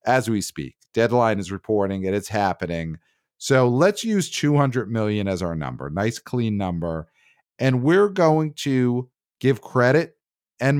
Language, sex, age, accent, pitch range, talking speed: English, male, 40-59, American, 100-130 Hz, 150 wpm